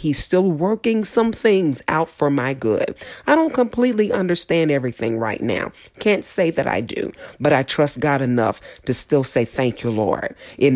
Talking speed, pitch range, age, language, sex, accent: 185 wpm, 125-170 Hz, 40-59, English, female, American